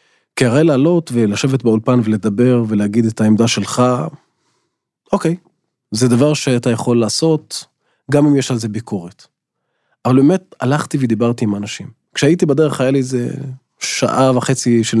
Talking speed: 145 wpm